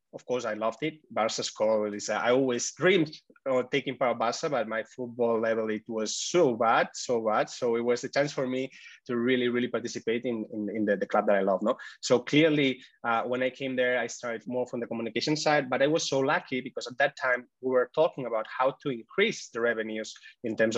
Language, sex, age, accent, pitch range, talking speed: English, male, 20-39, Spanish, 115-145 Hz, 235 wpm